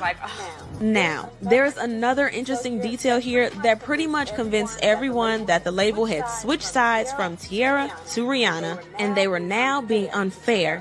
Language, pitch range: English, 190-250 Hz